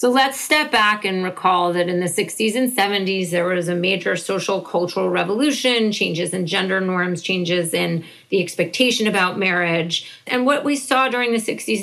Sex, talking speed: female, 185 wpm